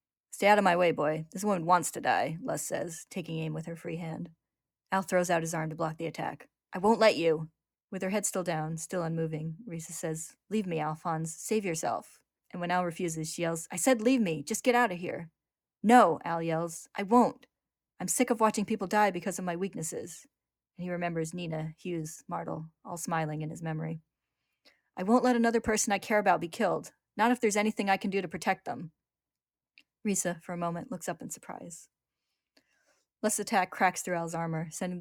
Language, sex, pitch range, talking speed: English, female, 165-195 Hz, 210 wpm